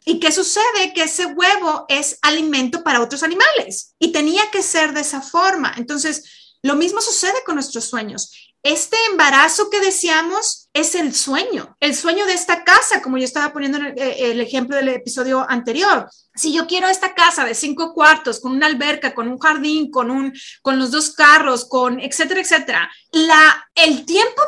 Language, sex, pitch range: Spanish, female, 260-340 Hz